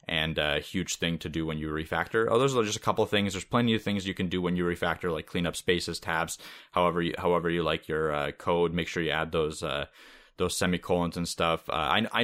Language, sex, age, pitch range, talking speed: English, male, 20-39, 85-105 Hz, 260 wpm